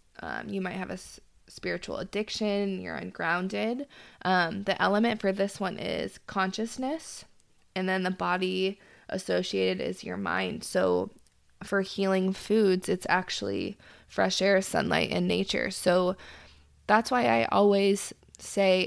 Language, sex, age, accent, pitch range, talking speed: English, female, 20-39, American, 180-200 Hz, 135 wpm